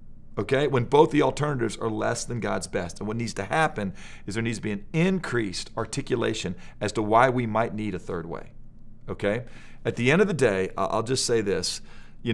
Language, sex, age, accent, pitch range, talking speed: English, male, 40-59, American, 105-130 Hz, 215 wpm